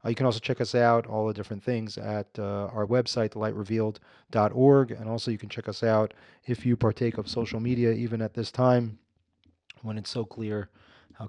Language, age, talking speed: English, 30-49, 195 wpm